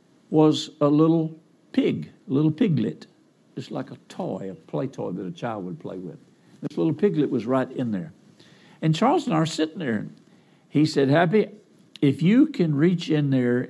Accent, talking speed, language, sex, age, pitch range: American, 190 wpm, English, male, 60-79, 130-180 Hz